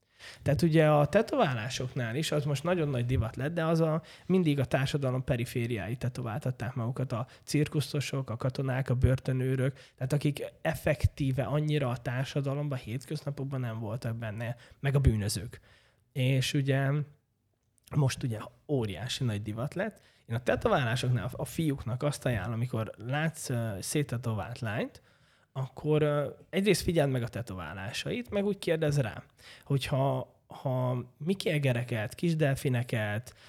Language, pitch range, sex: Hungarian, 120-150 Hz, male